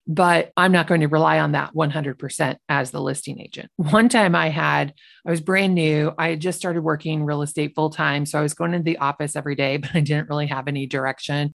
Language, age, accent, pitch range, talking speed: English, 30-49, American, 150-185 Hz, 235 wpm